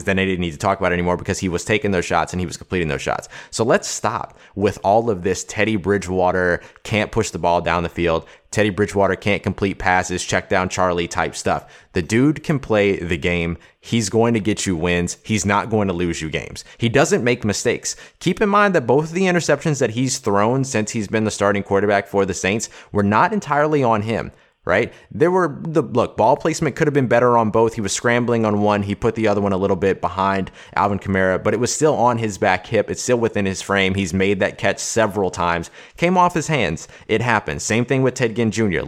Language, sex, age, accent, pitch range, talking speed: English, male, 20-39, American, 95-115 Hz, 240 wpm